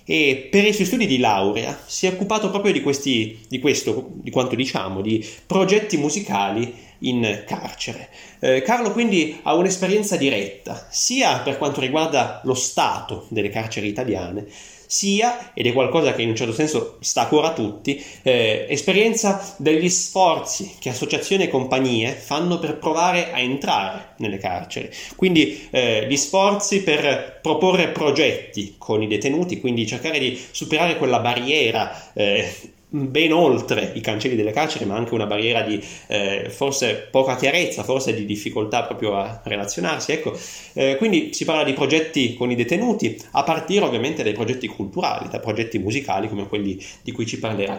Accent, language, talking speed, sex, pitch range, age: native, Italian, 160 wpm, male, 115-165 Hz, 30-49